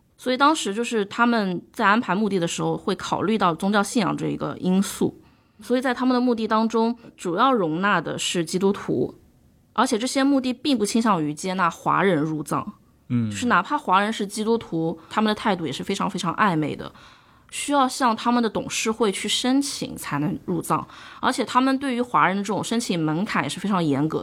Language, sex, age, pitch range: Chinese, female, 20-39, 175-240 Hz